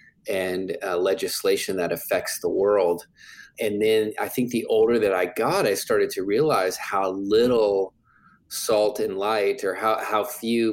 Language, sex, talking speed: English, male, 160 wpm